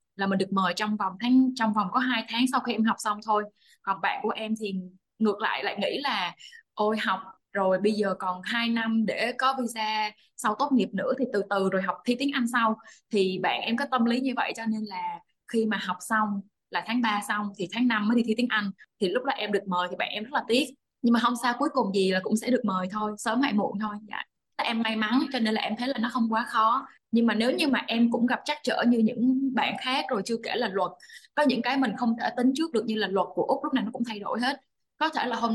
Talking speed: 280 wpm